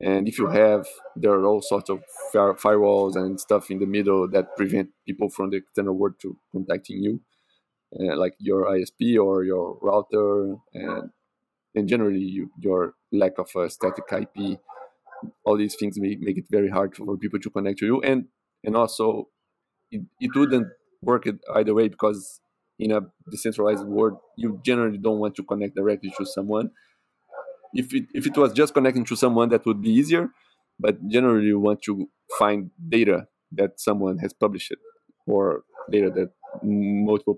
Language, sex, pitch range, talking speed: English, male, 100-130 Hz, 170 wpm